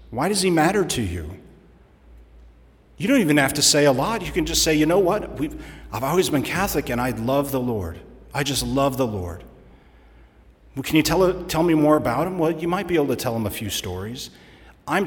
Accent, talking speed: American, 220 wpm